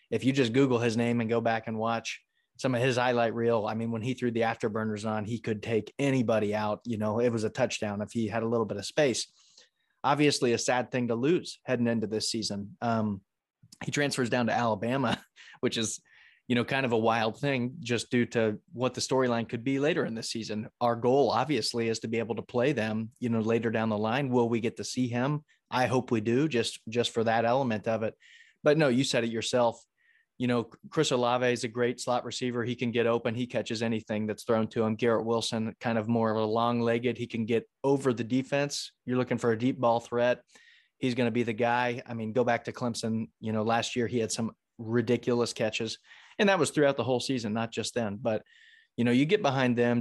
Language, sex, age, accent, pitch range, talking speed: English, male, 30-49, American, 115-125 Hz, 240 wpm